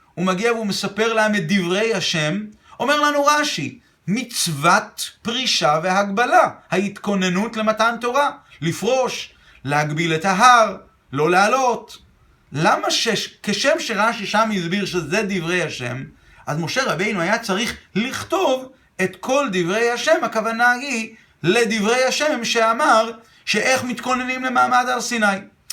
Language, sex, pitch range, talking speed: Hebrew, male, 175-230 Hz, 120 wpm